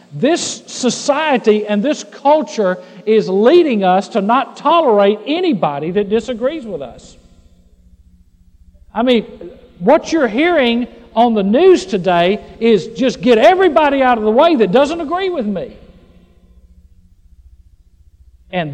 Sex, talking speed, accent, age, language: male, 125 wpm, American, 50-69, English